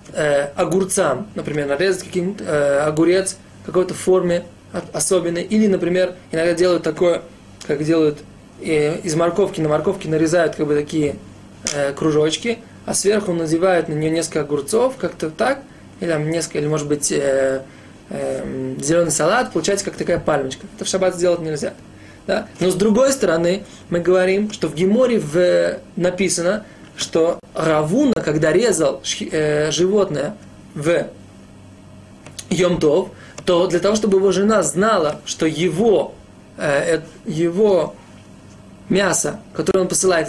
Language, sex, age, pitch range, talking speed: Russian, male, 20-39, 155-195 Hz, 130 wpm